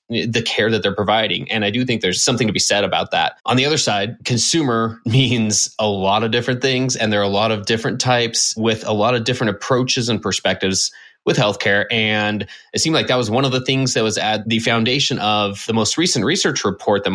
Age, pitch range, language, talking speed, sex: 20-39, 105-125 Hz, English, 235 wpm, male